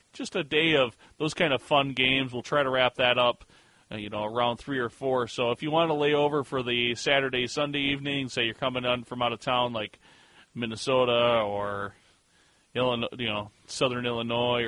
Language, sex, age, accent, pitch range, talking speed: English, male, 30-49, American, 120-140 Hz, 195 wpm